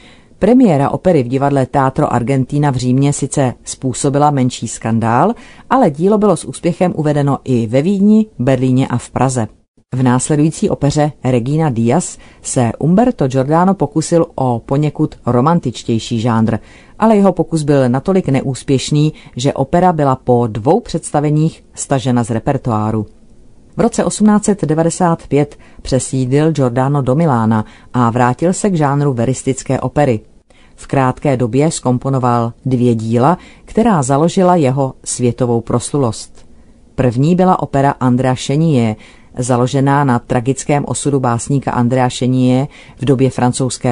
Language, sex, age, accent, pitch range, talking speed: Czech, female, 40-59, native, 125-150 Hz, 125 wpm